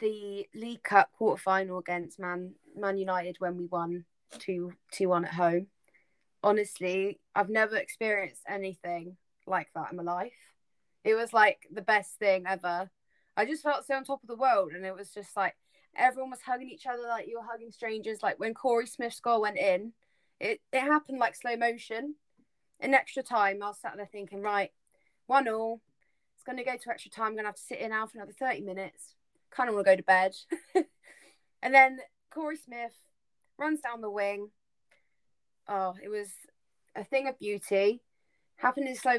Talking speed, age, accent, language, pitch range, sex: 190 wpm, 20-39, British, English, 195-255 Hz, female